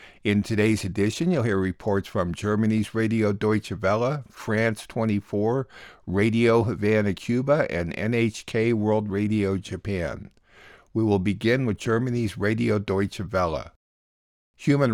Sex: male